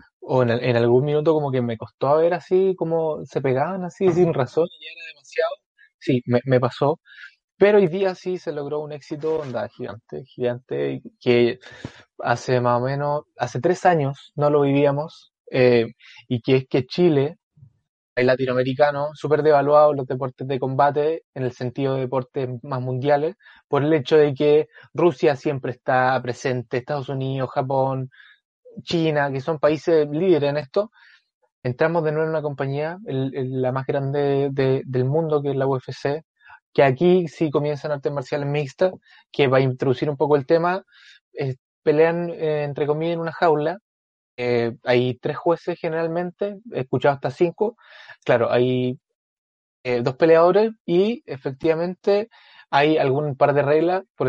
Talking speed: 165 wpm